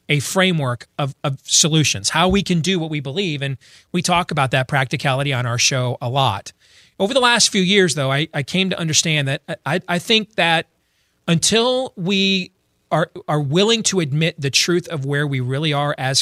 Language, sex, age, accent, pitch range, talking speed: English, male, 30-49, American, 140-180 Hz, 200 wpm